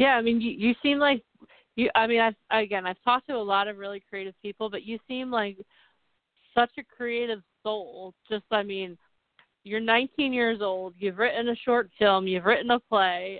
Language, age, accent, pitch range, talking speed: English, 30-49, American, 200-240 Hz, 200 wpm